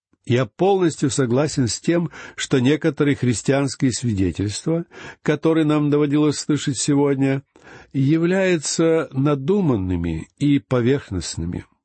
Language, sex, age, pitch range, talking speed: Russian, male, 60-79, 115-160 Hz, 90 wpm